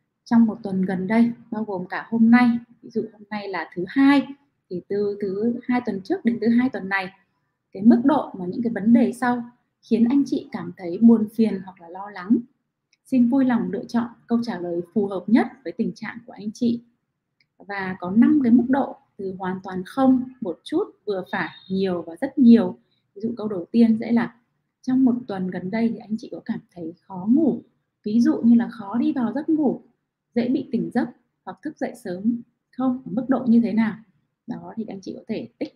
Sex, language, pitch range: female, Vietnamese, 195-245 Hz